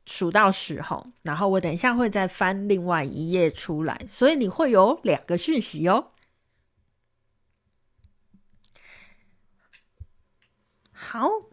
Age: 30-49